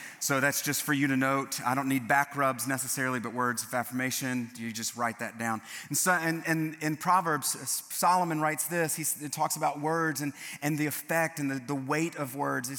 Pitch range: 115-150 Hz